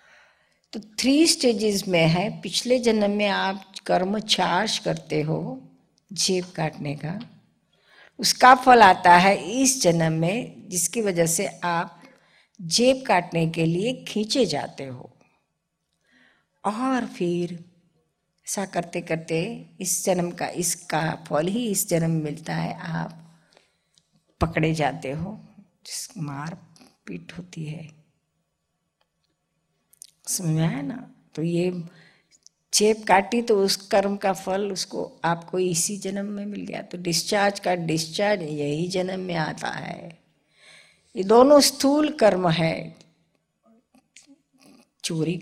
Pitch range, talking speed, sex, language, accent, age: 165-210 Hz, 125 wpm, female, Hindi, native, 50-69